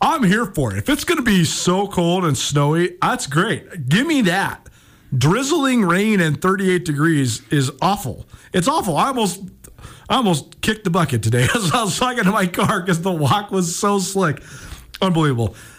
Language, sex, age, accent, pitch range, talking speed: English, male, 40-59, American, 130-175 Hz, 185 wpm